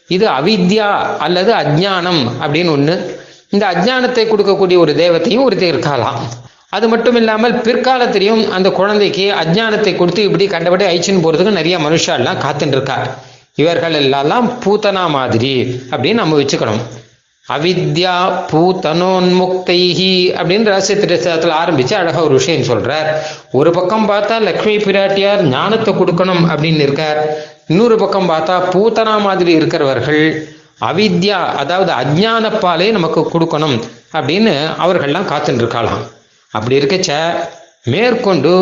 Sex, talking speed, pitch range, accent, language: male, 115 wpm, 150-195 Hz, native, Tamil